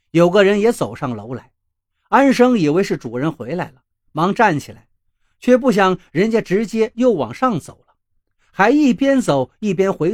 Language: Chinese